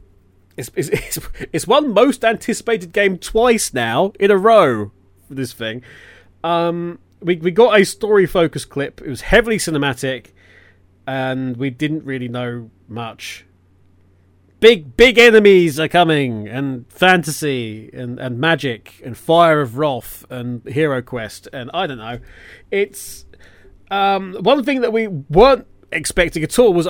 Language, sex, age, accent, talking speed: English, male, 30-49, British, 145 wpm